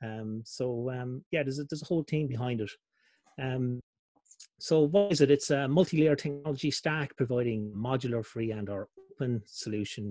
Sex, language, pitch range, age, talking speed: male, English, 115-150 Hz, 30-49, 170 wpm